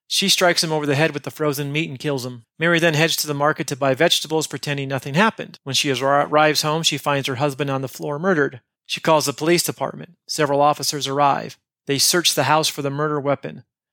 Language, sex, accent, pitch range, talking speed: English, male, American, 140-170 Hz, 230 wpm